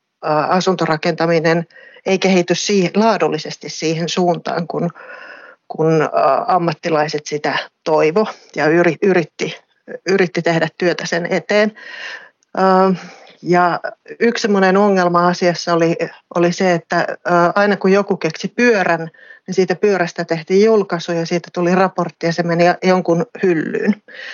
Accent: native